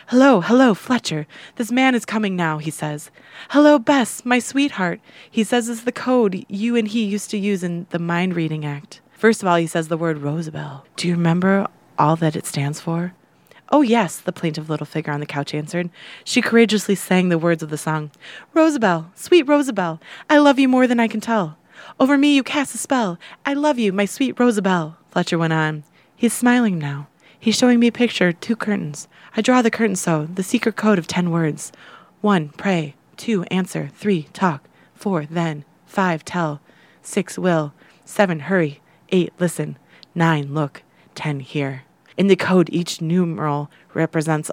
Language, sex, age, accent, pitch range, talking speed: English, female, 20-39, American, 155-215 Hz, 185 wpm